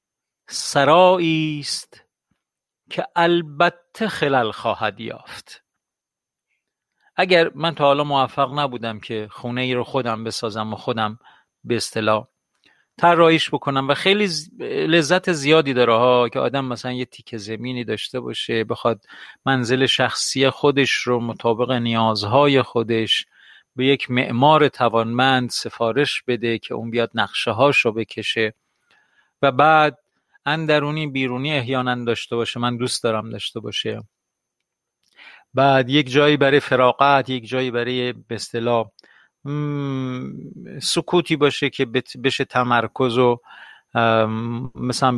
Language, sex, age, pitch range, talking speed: Persian, male, 40-59, 120-145 Hz, 115 wpm